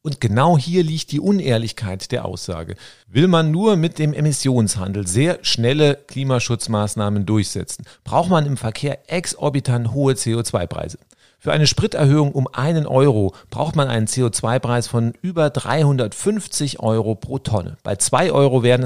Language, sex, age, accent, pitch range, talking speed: German, male, 40-59, German, 105-145 Hz, 145 wpm